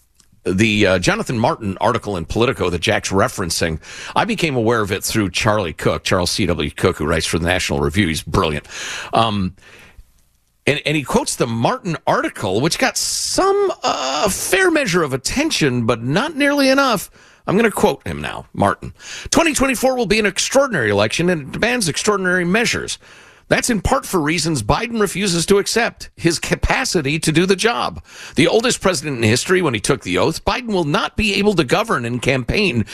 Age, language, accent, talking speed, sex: 50-69, English, American, 185 wpm, male